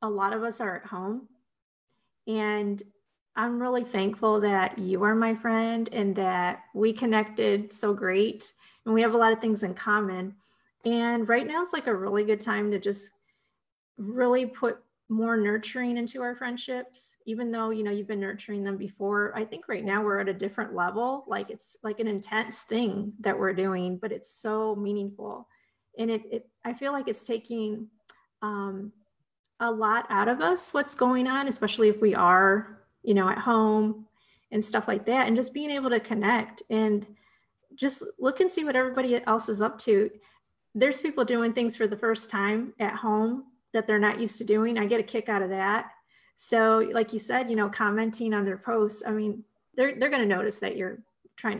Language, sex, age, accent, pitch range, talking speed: English, female, 30-49, American, 205-235 Hz, 195 wpm